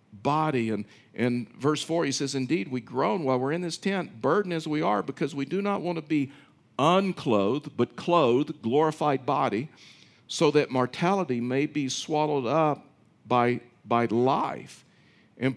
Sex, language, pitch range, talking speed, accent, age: male, English, 115-145 Hz, 160 wpm, American, 50-69